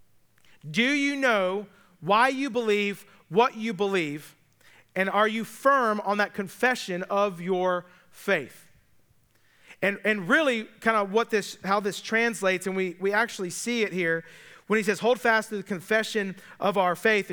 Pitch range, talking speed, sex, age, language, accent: 180-230 Hz, 165 wpm, male, 40-59, English, American